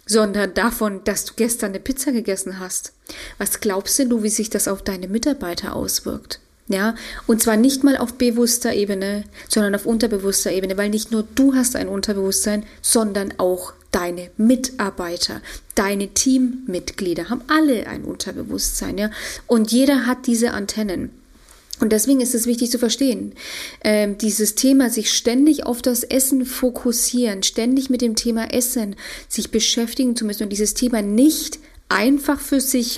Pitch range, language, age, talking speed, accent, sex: 210-255 Hz, German, 30-49, 155 wpm, German, female